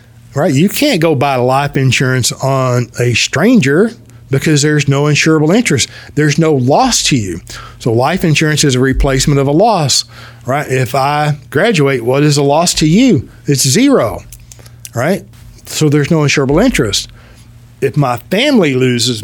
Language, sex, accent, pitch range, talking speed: English, male, American, 120-155 Hz, 160 wpm